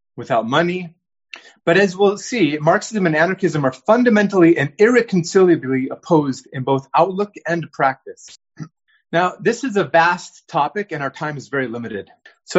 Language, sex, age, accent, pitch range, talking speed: English, male, 30-49, American, 145-200 Hz, 155 wpm